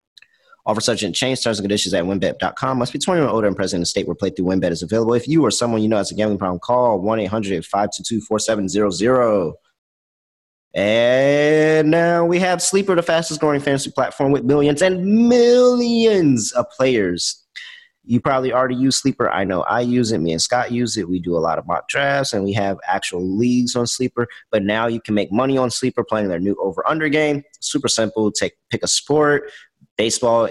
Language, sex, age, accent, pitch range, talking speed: English, male, 30-49, American, 105-150 Hz, 205 wpm